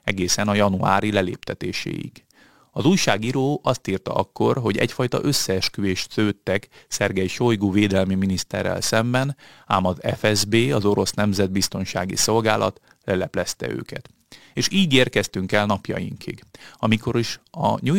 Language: Hungarian